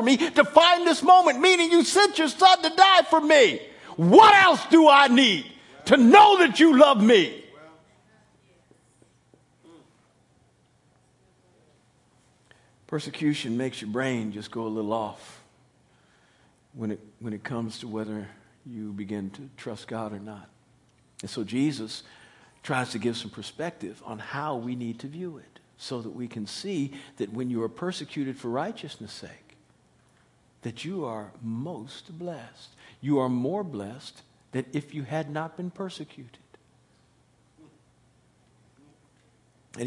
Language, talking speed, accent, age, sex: English, 140 wpm, American, 50-69, male